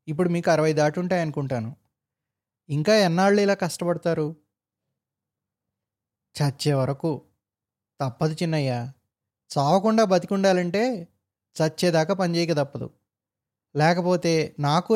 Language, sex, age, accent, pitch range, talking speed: Telugu, male, 20-39, native, 125-175 Hz, 85 wpm